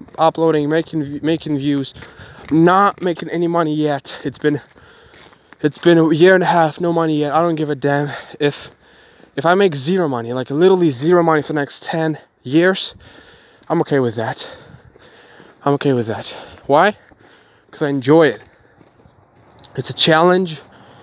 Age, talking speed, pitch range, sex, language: 20-39, 165 wpm, 135-165 Hz, male, English